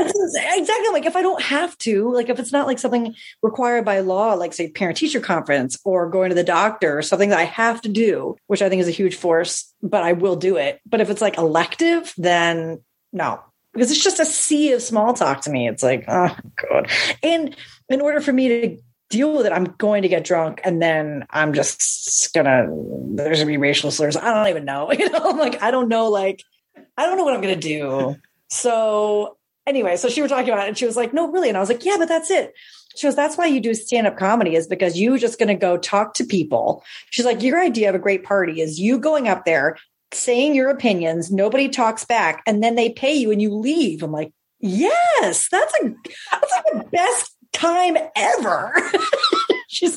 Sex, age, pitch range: female, 30-49, 185-290 Hz